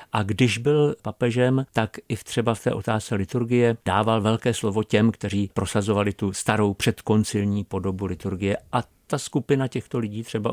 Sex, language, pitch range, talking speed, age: male, Czech, 100-125 Hz, 160 wpm, 50-69